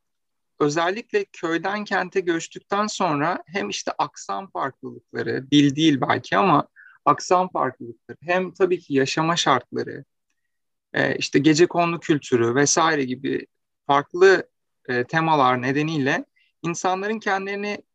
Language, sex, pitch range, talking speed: Turkish, male, 140-195 Hz, 105 wpm